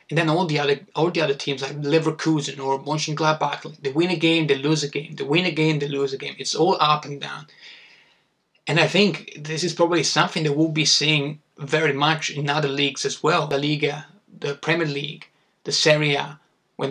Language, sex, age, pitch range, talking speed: Italian, male, 20-39, 140-155 Hz, 210 wpm